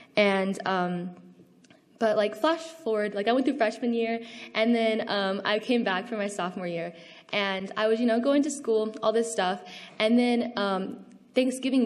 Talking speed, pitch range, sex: 185 wpm, 185-220 Hz, female